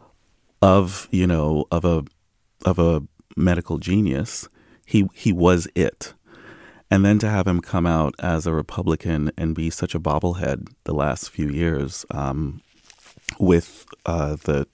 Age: 30-49